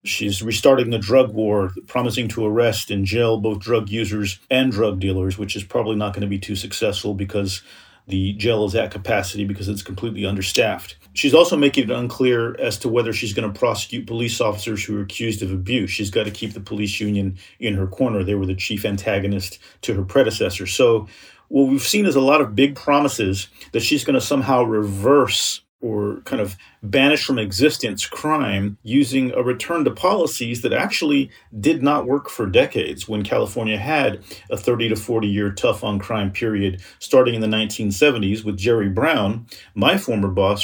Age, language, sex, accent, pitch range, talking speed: 40-59, English, male, American, 100-125 Hz, 190 wpm